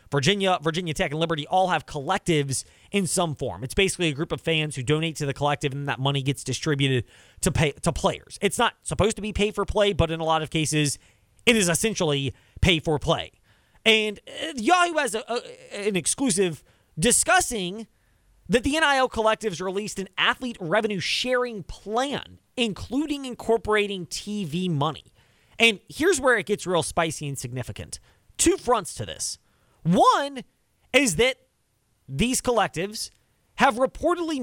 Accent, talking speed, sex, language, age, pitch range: American, 155 wpm, male, English, 30-49, 145-235 Hz